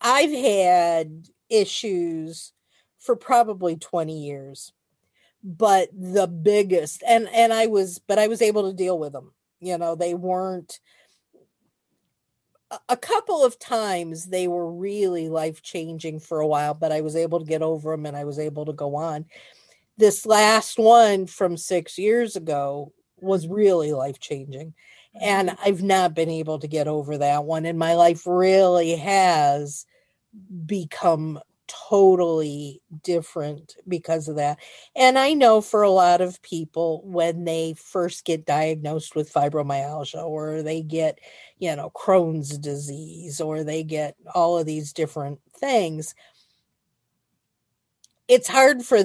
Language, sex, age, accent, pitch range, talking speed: English, female, 50-69, American, 155-200 Hz, 145 wpm